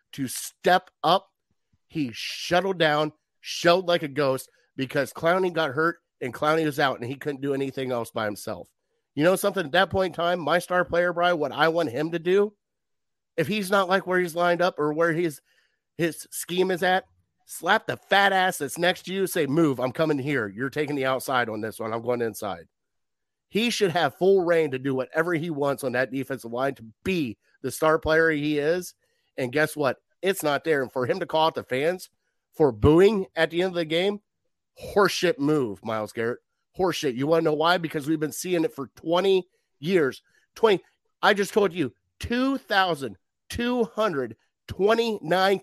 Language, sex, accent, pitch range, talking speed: English, male, American, 135-185 Hz, 195 wpm